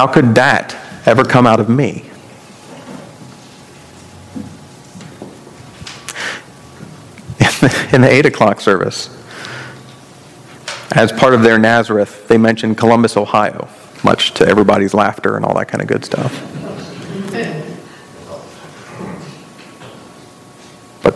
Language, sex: English, male